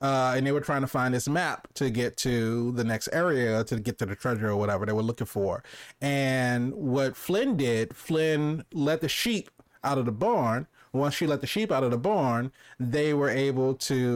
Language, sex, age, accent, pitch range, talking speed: English, male, 30-49, American, 120-145 Hz, 215 wpm